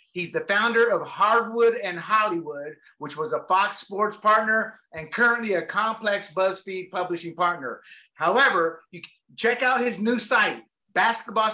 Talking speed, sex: 140 wpm, male